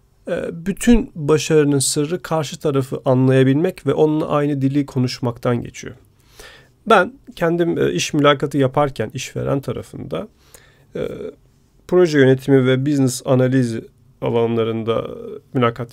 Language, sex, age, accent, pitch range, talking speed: Turkish, male, 40-59, native, 125-180 Hz, 100 wpm